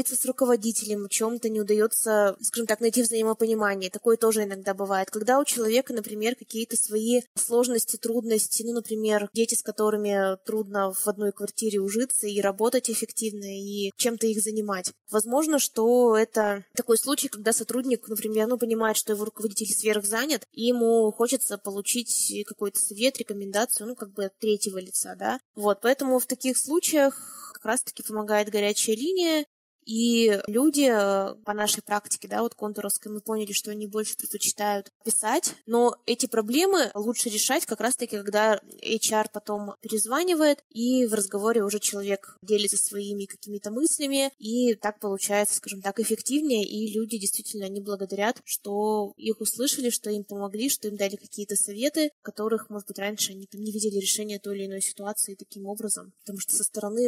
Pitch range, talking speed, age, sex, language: 205-235 Hz, 160 wpm, 20-39, female, Russian